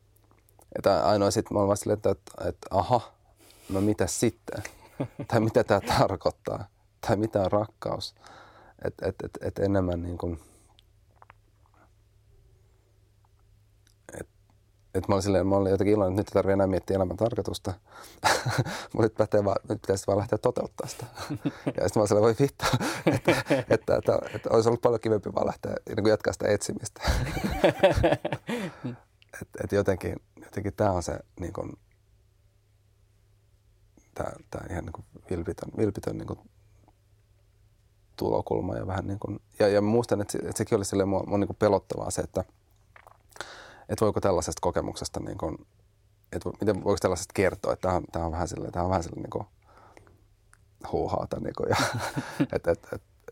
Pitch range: 100-105 Hz